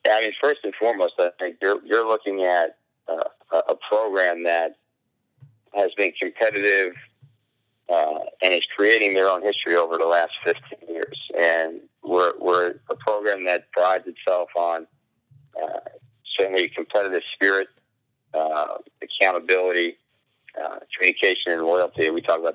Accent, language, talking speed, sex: American, English, 140 wpm, male